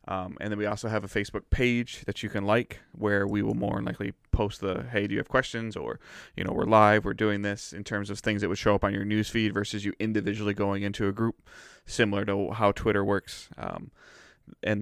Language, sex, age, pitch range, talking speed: English, male, 20-39, 100-110 Hz, 245 wpm